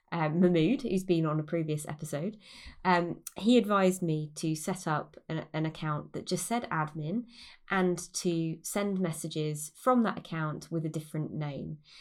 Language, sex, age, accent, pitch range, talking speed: English, female, 20-39, British, 155-195 Hz, 165 wpm